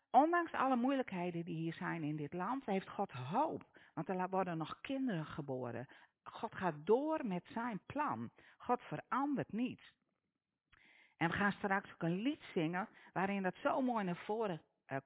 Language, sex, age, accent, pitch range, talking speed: Dutch, female, 50-69, Dutch, 150-235 Hz, 165 wpm